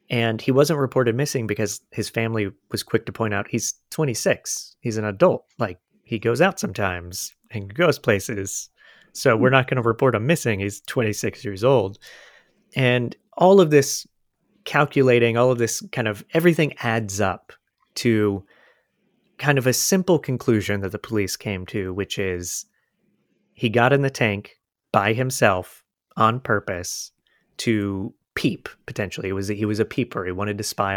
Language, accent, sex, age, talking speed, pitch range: English, American, male, 30-49, 165 wpm, 100-130 Hz